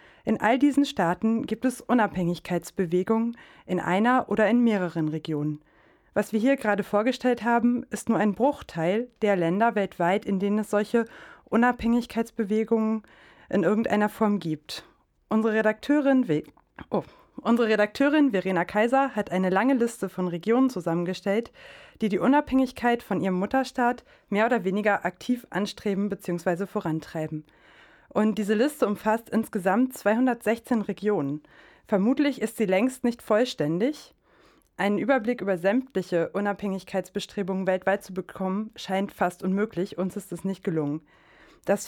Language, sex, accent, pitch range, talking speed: German, female, German, 190-240 Hz, 130 wpm